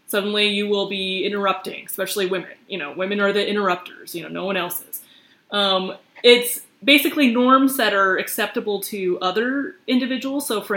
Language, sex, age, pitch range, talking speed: English, female, 20-39, 190-235 Hz, 175 wpm